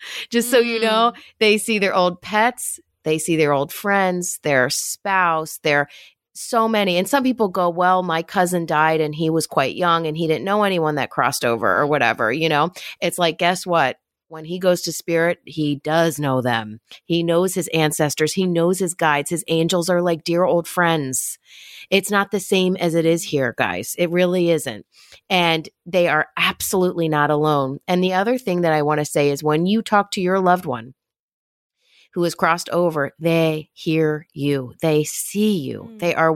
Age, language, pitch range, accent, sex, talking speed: 30-49, English, 155-190 Hz, American, female, 195 wpm